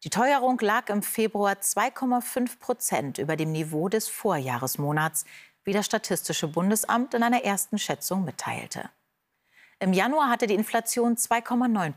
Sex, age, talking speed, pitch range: female, 40-59, 135 wpm, 170-240 Hz